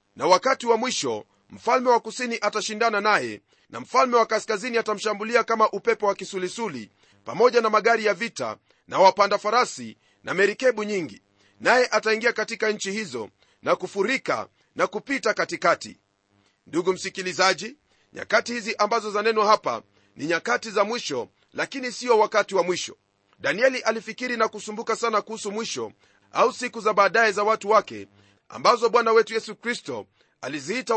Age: 40-59